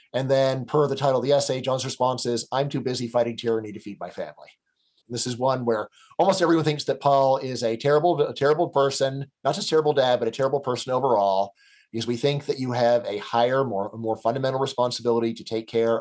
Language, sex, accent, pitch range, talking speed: English, male, American, 115-140 Hz, 215 wpm